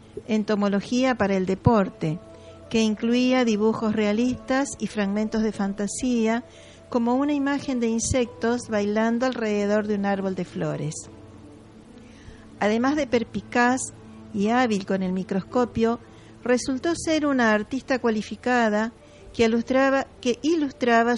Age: 50-69